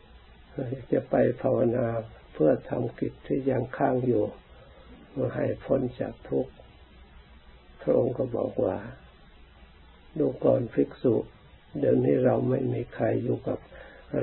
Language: Thai